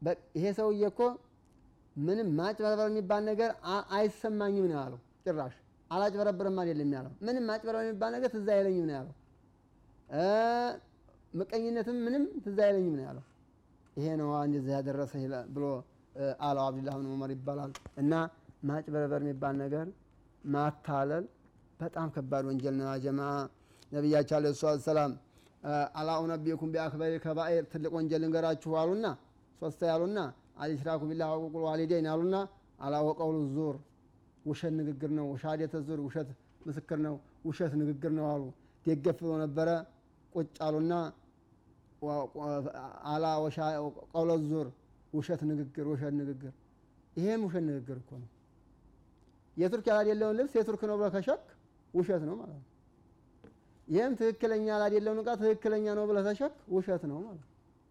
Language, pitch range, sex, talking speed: Amharic, 145-195 Hz, male, 80 wpm